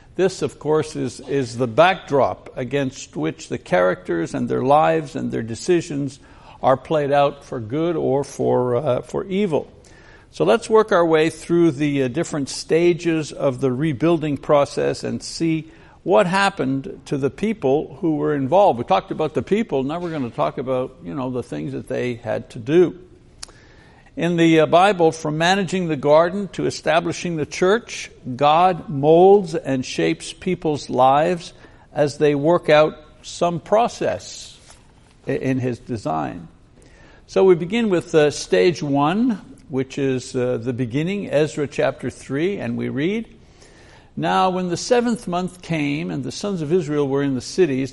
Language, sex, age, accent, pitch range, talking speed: English, male, 60-79, American, 135-175 Hz, 160 wpm